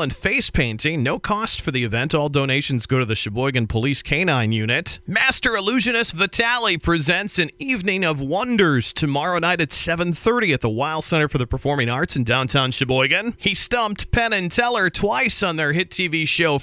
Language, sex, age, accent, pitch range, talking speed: English, male, 40-59, American, 140-195 Hz, 185 wpm